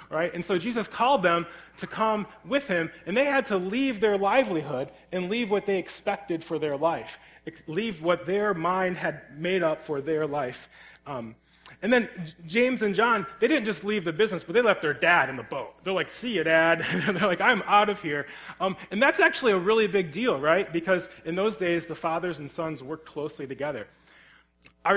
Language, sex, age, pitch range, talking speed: English, male, 30-49, 150-200 Hz, 215 wpm